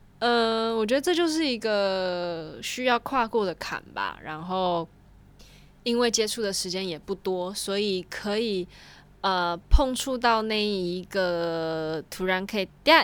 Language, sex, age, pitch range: Chinese, female, 20-39, 170-215 Hz